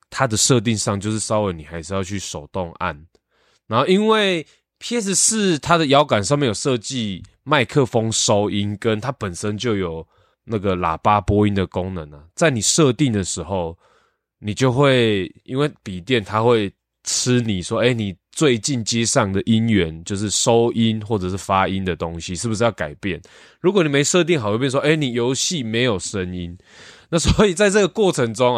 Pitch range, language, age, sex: 95-135 Hz, Chinese, 20-39, male